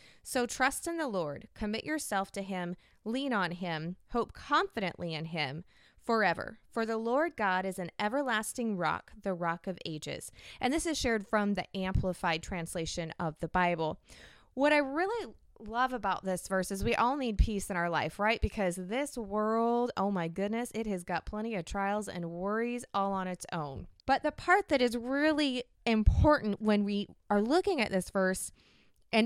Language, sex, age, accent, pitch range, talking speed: English, female, 20-39, American, 180-235 Hz, 185 wpm